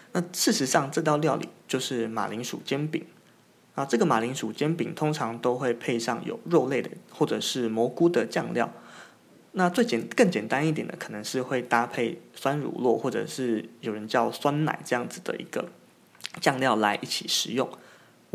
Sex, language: male, Chinese